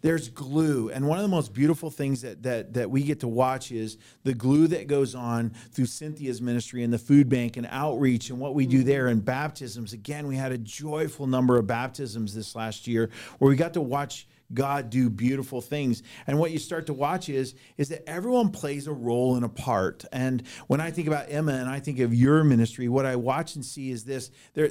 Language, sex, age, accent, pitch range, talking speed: English, male, 40-59, American, 125-155 Hz, 230 wpm